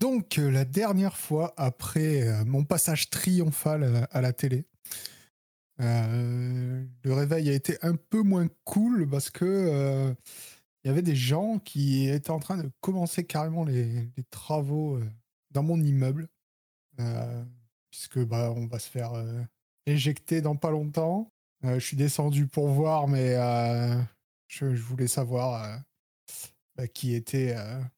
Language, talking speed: French, 160 wpm